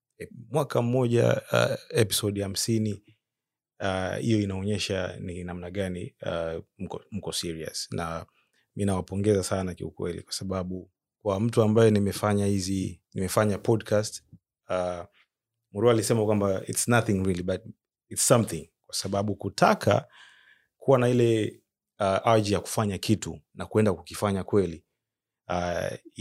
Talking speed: 125 wpm